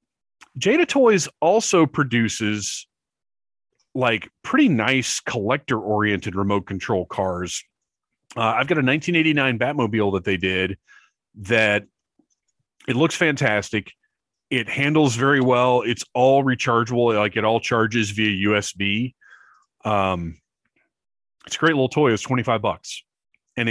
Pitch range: 100-135 Hz